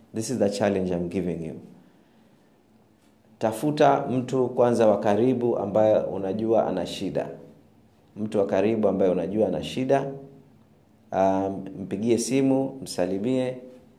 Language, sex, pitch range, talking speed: Swahili, male, 95-120 Hz, 115 wpm